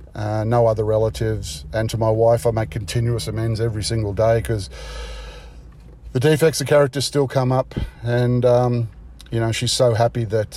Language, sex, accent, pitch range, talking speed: English, male, Australian, 105-125 Hz, 175 wpm